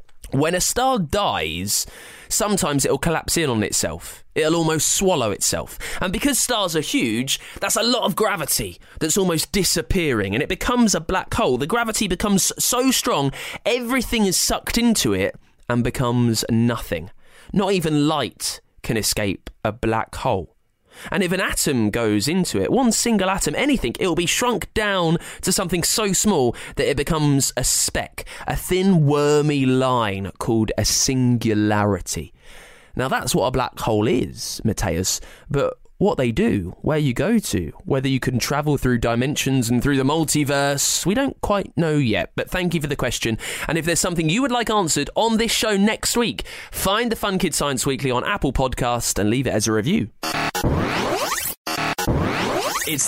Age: 20-39